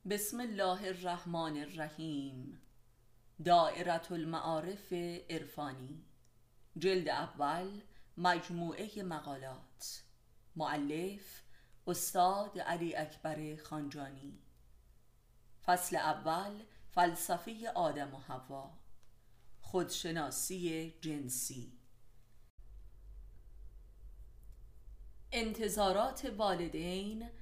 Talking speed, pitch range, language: 55 wpm, 150-195 Hz, Persian